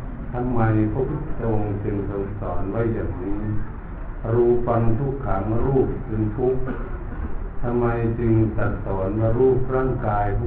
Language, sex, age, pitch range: Thai, male, 60-79, 95-120 Hz